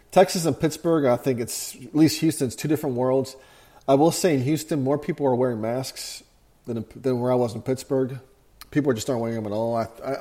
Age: 40-59